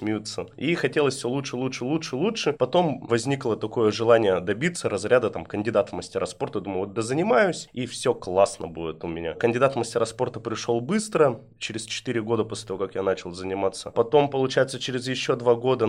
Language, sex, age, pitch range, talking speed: Russian, male, 20-39, 110-135 Hz, 180 wpm